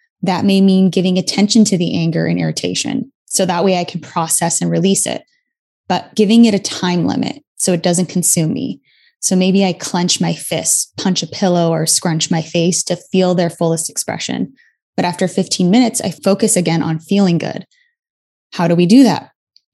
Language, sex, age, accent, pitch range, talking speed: English, female, 10-29, American, 165-205 Hz, 190 wpm